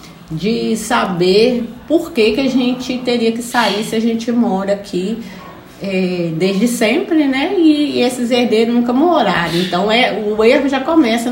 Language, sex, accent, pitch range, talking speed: Portuguese, female, Brazilian, 200-265 Hz, 165 wpm